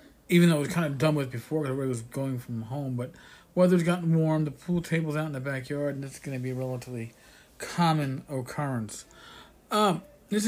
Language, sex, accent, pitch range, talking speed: English, male, American, 130-160 Hz, 210 wpm